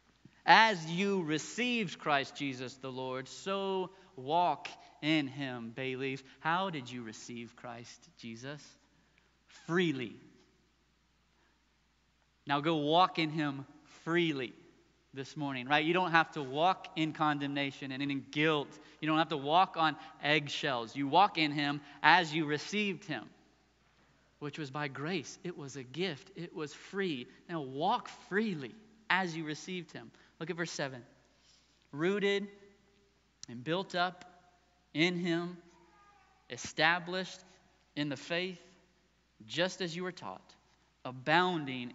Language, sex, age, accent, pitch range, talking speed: English, male, 30-49, American, 135-175 Hz, 130 wpm